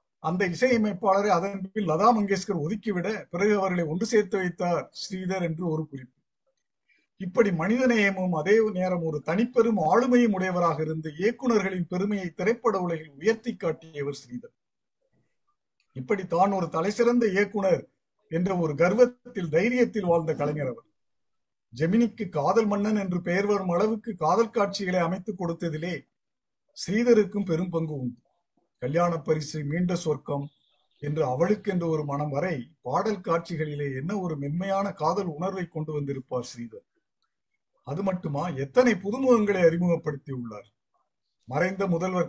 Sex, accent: male, native